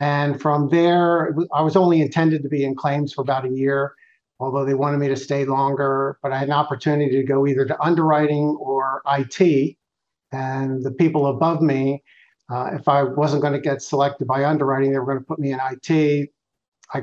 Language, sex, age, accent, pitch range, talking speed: English, male, 50-69, American, 135-150 Hz, 195 wpm